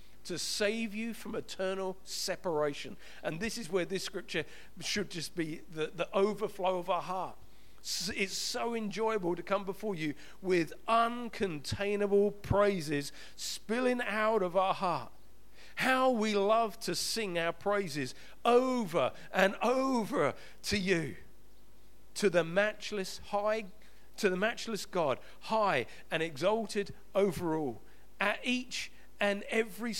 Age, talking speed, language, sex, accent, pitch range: 50-69, 130 wpm, English, male, British, 160-220 Hz